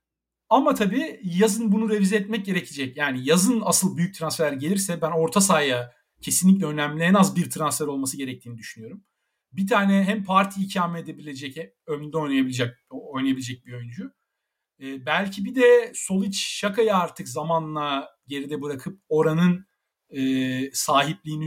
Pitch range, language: 140-195 Hz, Turkish